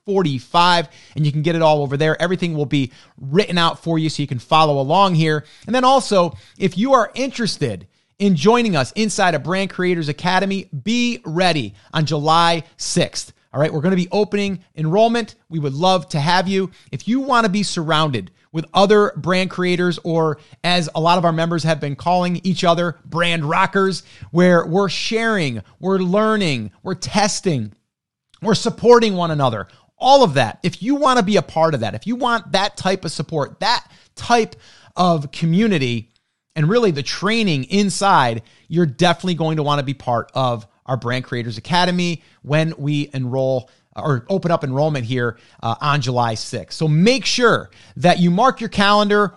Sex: male